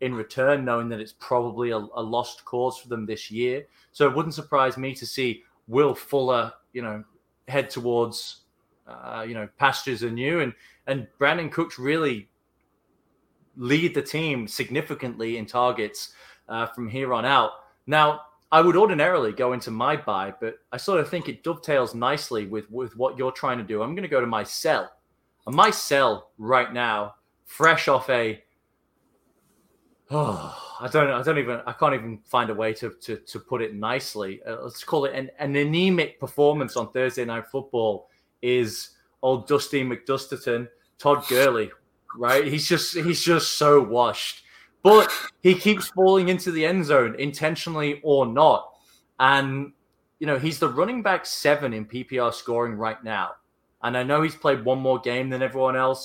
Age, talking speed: 20-39, 175 wpm